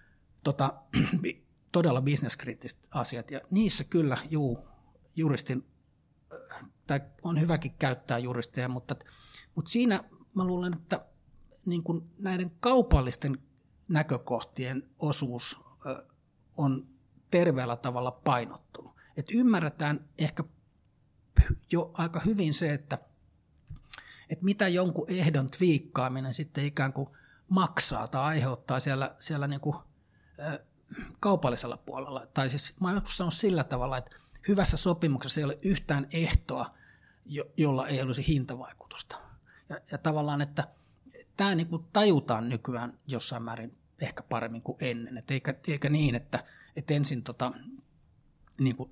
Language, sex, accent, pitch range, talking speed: Finnish, male, native, 130-165 Hz, 115 wpm